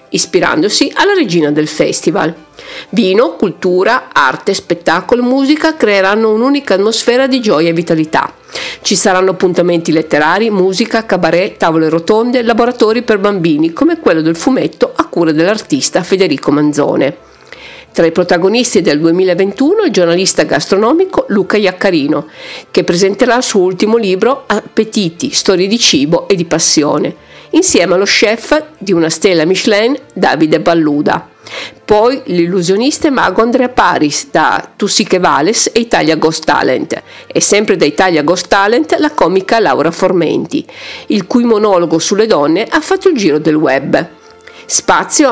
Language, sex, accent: Italian, female, native